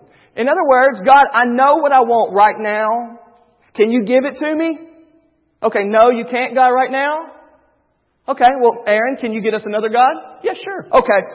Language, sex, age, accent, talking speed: English, male, 40-59, American, 190 wpm